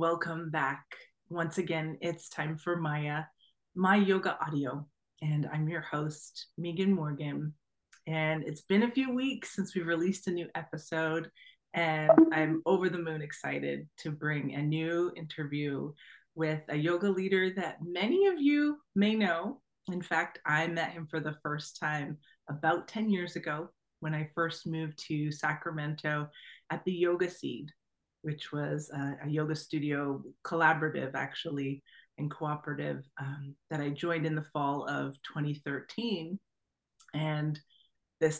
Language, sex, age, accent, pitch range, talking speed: English, female, 30-49, American, 150-175 Hz, 145 wpm